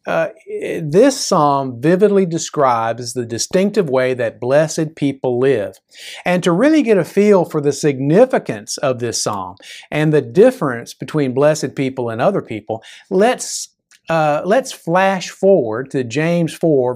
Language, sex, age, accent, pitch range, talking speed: English, male, 50-69, American, 130-180 Hz, 145 wpm